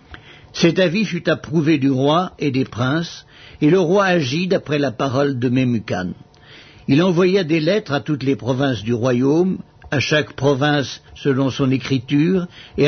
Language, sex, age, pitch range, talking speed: English, male, 60-79, 130-170 Hz, 165 wpm